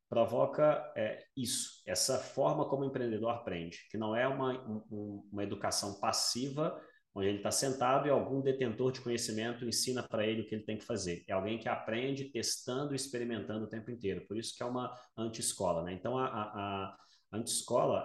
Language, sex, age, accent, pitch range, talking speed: Portuguese, male, 30-49, Brazilian, 100-120 Hz, 195 wpm